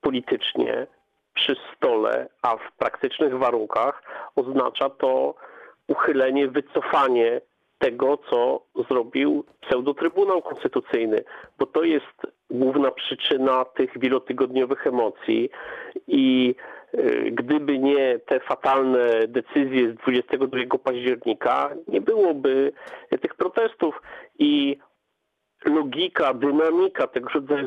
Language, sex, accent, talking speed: Polish, male, native, 90 wpm